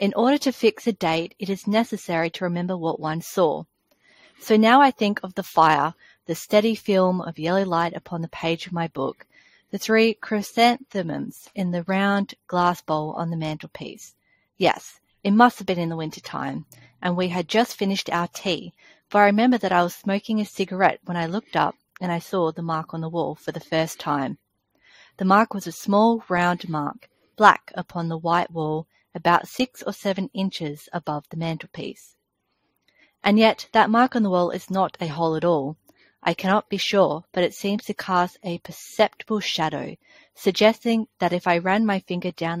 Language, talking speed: English, 195 wpm